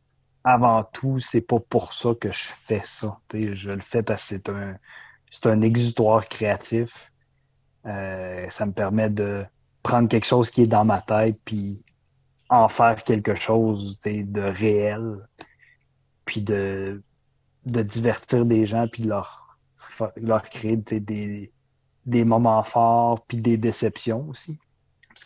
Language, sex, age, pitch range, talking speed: French, male, 30-49, 110-130 Hz, 145 wpm